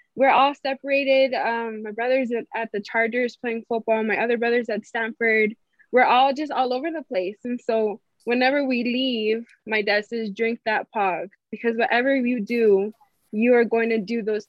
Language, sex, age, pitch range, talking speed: English, female, 20-39, 210-260 Hz, 185 wpm